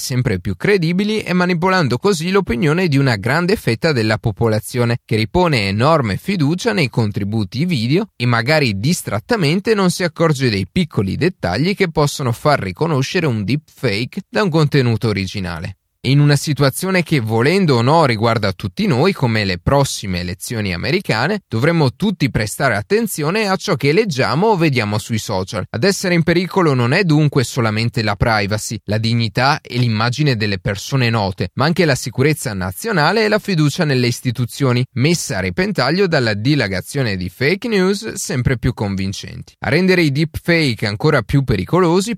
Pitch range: 115-175 Hz